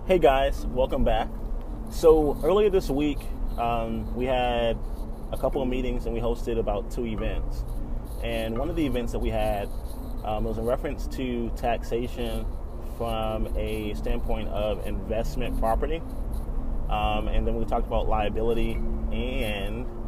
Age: 20-39